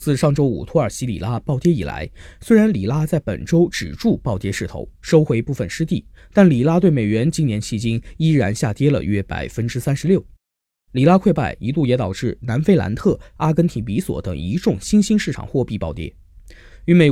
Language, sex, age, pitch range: Chinese, male, 20-39, 105-165 Hz